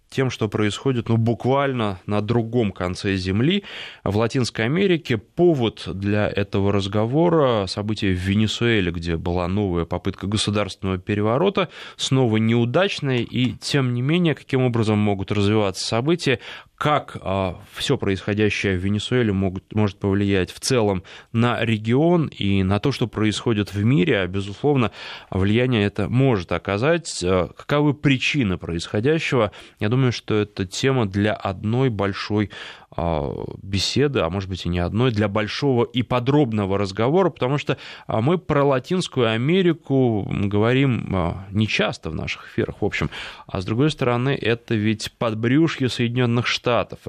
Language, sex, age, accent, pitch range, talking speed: Russian, male, 20-39, native, 100-130 Hz, 140 wpm